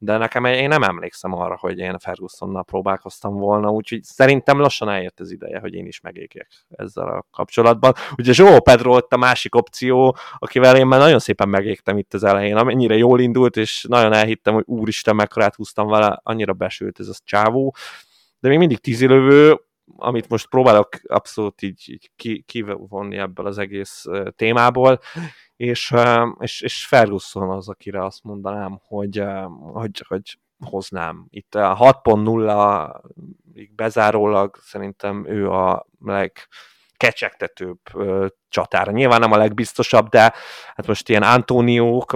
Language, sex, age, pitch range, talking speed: Hungarian, male, 20-39, 100-125 Hz, 140 wpm